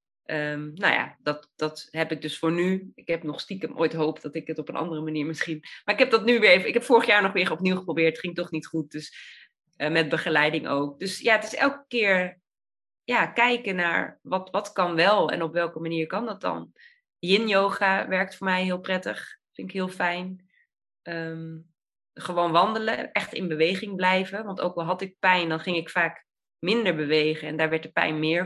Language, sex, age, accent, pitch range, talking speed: Dutch, female, 20-39, Dutch, 165-200 Hz, 215 wpm